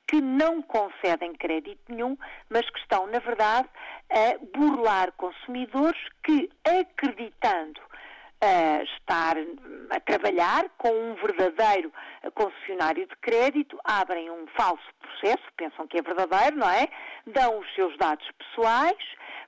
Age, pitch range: 50-69, 215-335 Hz